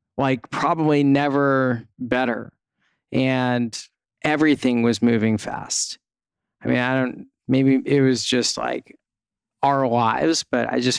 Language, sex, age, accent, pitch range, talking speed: English, male, 20-39, American, 125-135 Hz, 125 wpm